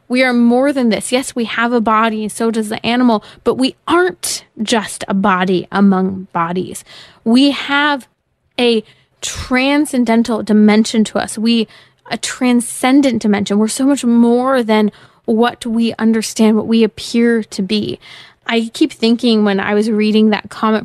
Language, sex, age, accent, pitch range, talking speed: English, female, 20-39, American, 215-255 Hz, 160 wpm